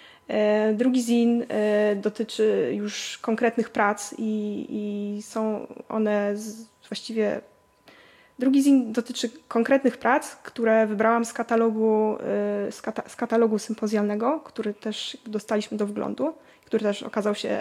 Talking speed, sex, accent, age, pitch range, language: 105 wpm, female, native, 20-39, 215-245 Hz, Polish